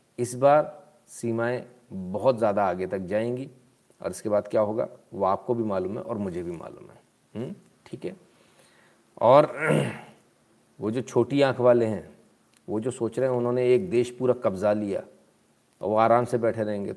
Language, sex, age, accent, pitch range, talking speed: Hindi, male, 40-59, native, 105-130 Hz, 175 wpm